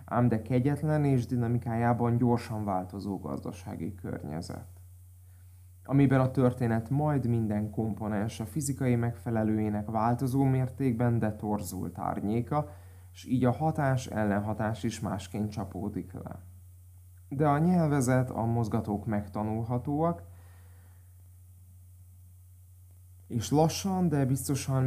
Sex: male